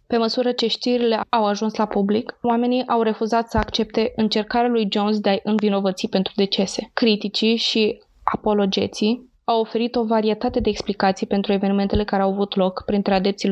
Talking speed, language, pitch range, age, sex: 170 wpm, Romanian, 205-230 Hz, 20-39, female